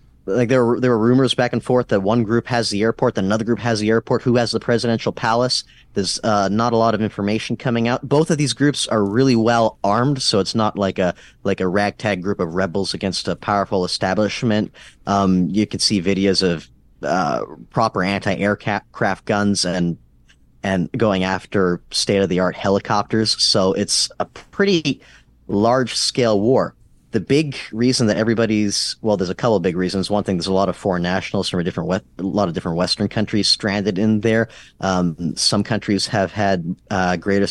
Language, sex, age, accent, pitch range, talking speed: English, male, 30-49, American, 95-115 Hz, 195 wpm